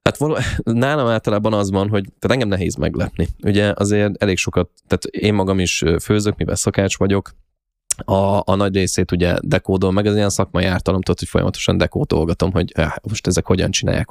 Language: Hungarian